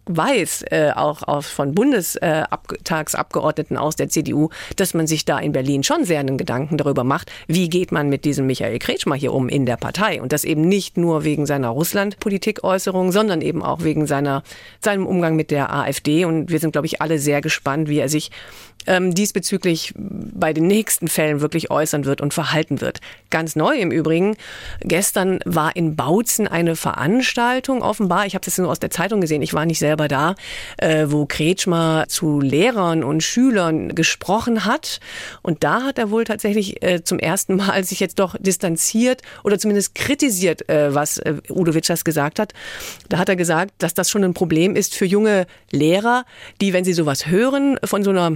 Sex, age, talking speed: female, 50-69, 185 wpm